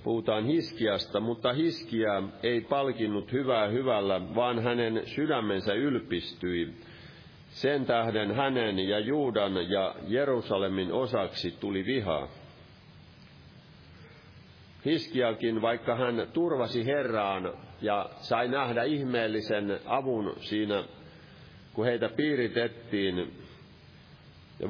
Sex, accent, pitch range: male, native, 105-130 Hz